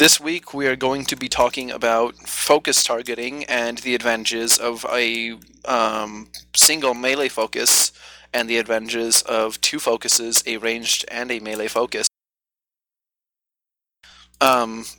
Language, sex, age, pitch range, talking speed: English, male, 30-49, 115-130 Hz, 130 wpm